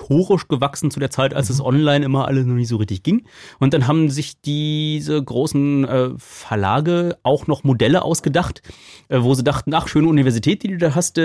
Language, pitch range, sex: German, 130-155 Hz, male